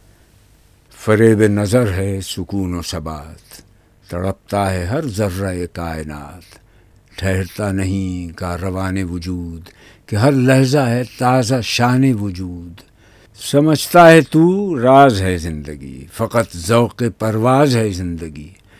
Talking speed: 110 wpm